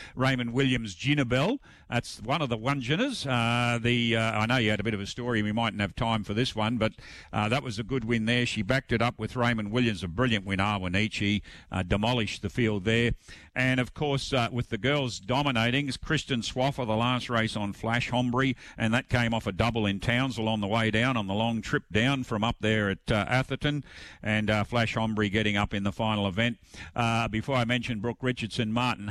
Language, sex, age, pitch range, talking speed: English, male, 50-69, 105-130 Hz, 225 wpm